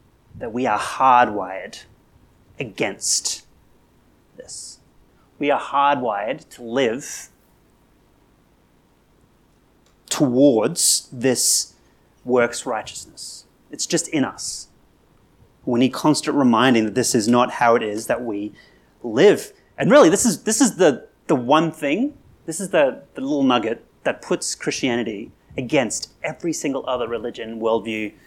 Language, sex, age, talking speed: English, male, 30-49, 125 wpm